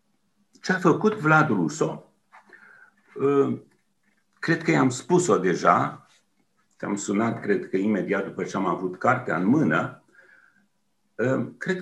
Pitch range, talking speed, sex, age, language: 130-180 Hz, 110 wpm, male, 50-69, English